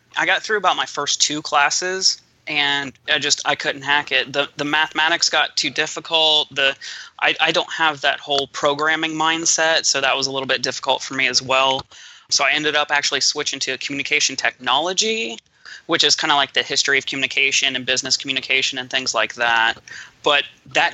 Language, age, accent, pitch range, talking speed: English, 20-39, American, 135-150 Hz, 200 wpm